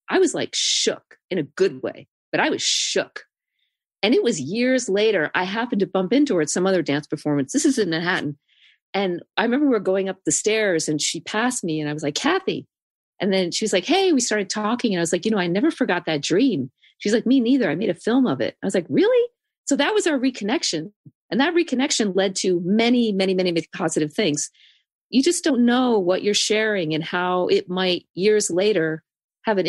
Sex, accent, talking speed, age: female, American, 230 wpm, 40-59